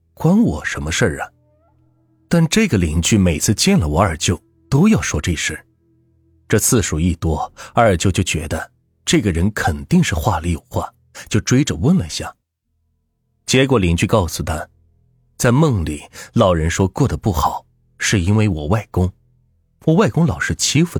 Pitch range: 85-125 Hz